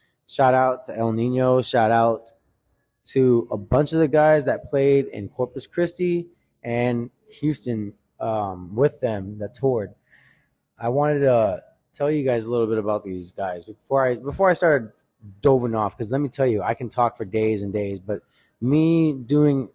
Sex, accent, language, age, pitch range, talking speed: male, American, English, 20-39, 110-145 Hz, 175 wpm